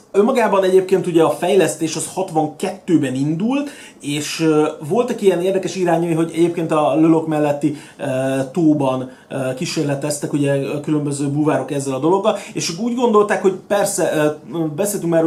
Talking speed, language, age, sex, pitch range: 140 wpm, Hungarian, 30-49, male, 150-180 Hz